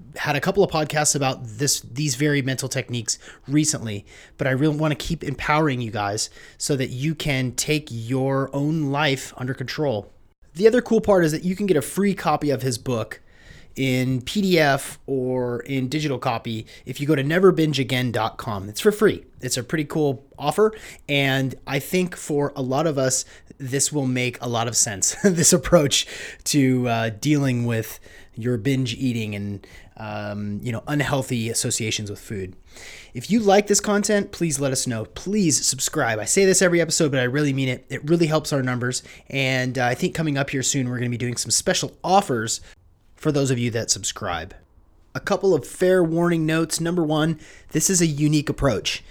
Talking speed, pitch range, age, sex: 195 wpm, 120-155 Hz, 30-49, male